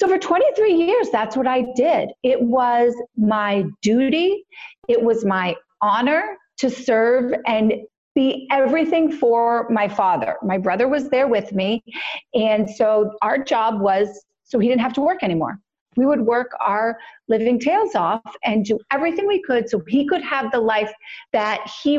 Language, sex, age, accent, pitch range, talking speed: English, female, 40-59, American, 205-275 Hz, 170 wpm